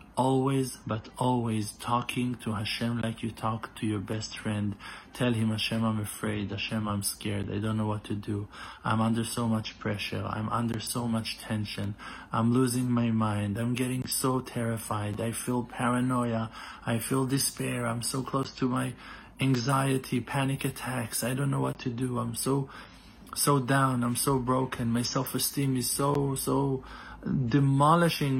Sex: male